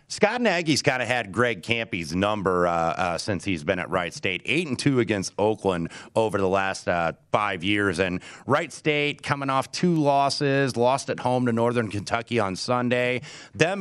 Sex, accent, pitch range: male, American, 95-125 Hz